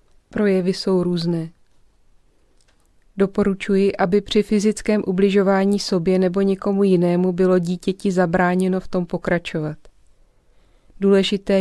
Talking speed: 100 wpm